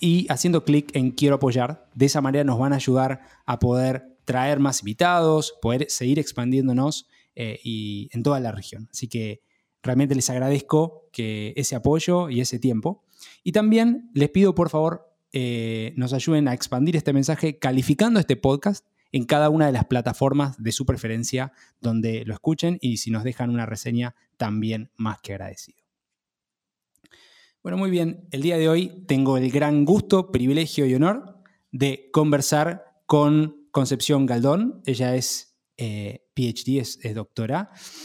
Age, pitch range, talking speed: 20-39, 125-155 Hz, 160 wpm